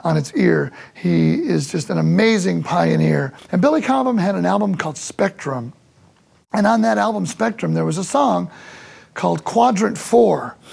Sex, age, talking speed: male, 40-59, 160 wpm